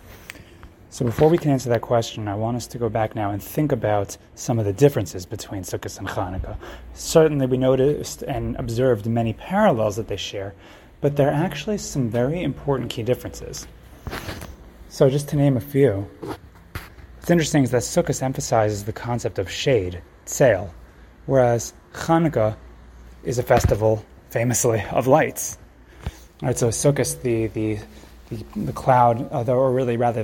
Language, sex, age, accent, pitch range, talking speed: English, male, 30-49, American, 105-135 Hz, 165 wpm